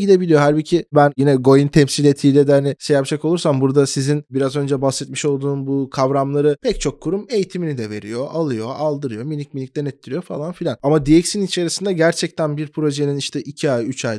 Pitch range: 135-170 Hz